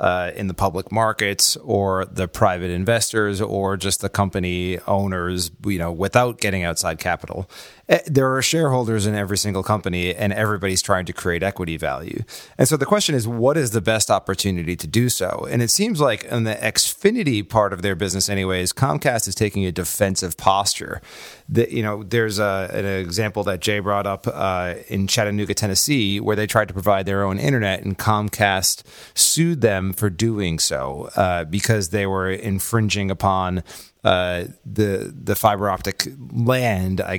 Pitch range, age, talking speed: 95-120 Hz, 30-49, 170 wpm